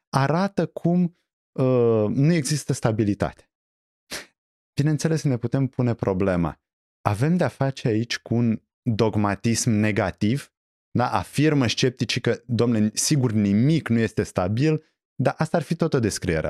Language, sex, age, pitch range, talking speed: Romanian, male, 20-39, 95-145 Hz, 130 wpm